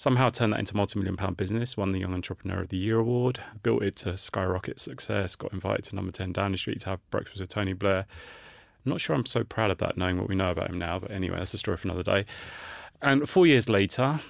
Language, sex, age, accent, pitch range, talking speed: English, male, 30-49, British, 95-110 Hz, 250 wpm